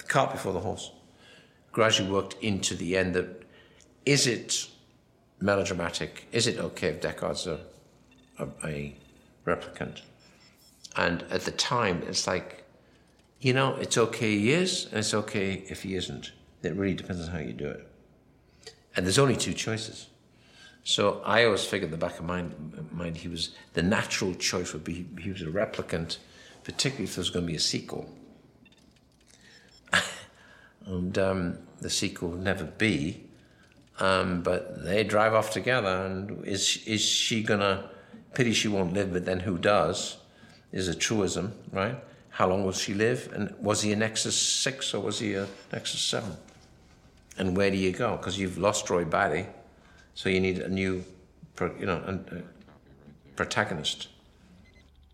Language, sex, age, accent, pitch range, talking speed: English, male, 60-79, British, 90-105 Hz, 160 wpm